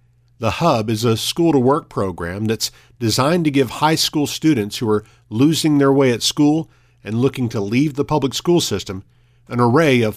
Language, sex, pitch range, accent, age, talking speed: English, male, 120-140 Hz, American, 50-69, 185 wpm